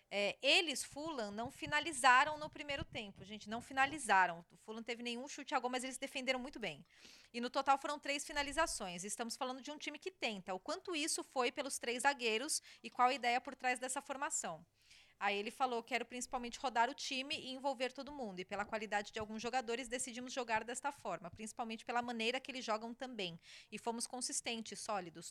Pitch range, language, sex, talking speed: 230-275 Hz, Portuguese, female, 200 wpm